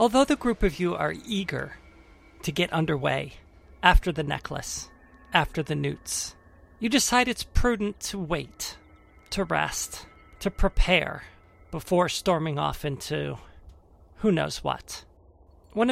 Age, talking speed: 40-59, 130 wpm